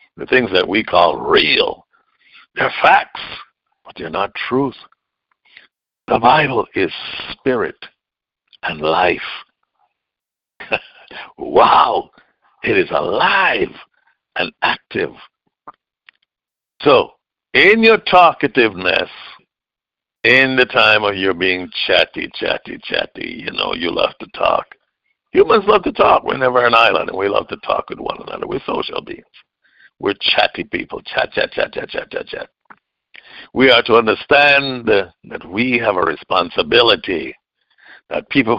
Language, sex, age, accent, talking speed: English, male, 60-79, American, 130 wpm